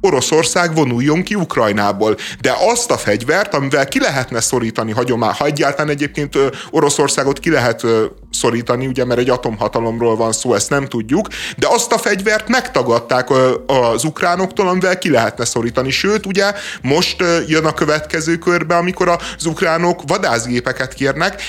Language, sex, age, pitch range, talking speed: Hungarian, male, 30-49, 120-165 Hz, 140 wpm